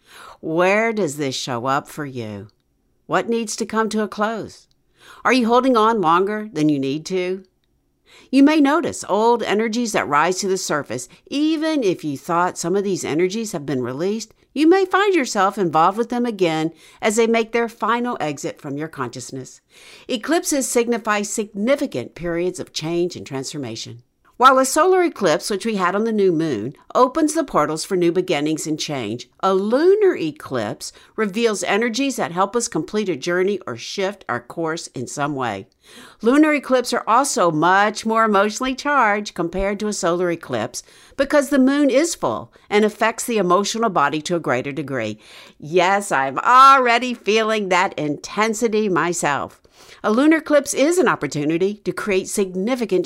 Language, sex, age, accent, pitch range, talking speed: English, female, 60-79, American, 160-235 Hz, 170 wpm